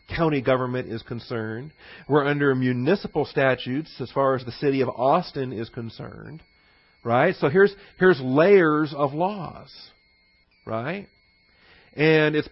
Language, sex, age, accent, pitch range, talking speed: English, male, 40-59, American, 125-160 Hz, 130 wpm